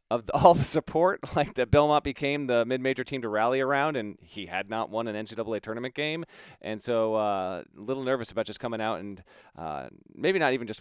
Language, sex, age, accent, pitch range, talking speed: English, male, 30-49, American, 110-140 Hz, 215 wpm